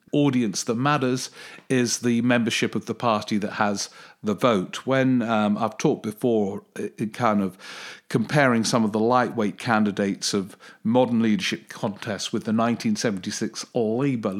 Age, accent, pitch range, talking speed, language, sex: 50-69, British, 110-135 Hz, 150 wpm, English, male